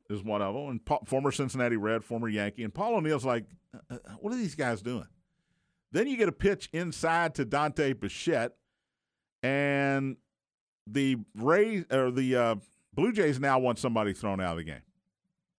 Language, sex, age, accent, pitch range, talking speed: English, male, 50-69, American, 130-185 Hz, 175 wpm